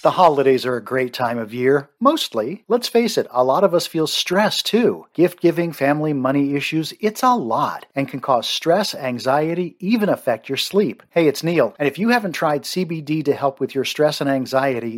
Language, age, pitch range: English, 50-69, 135-170 Hz